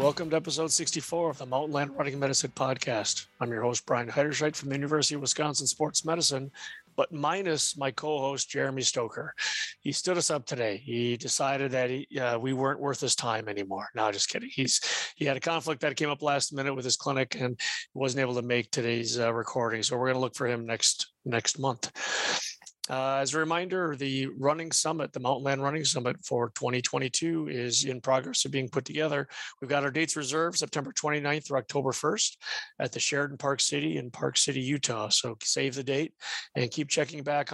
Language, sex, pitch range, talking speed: English, male, 130-155 Hz, 205 wpm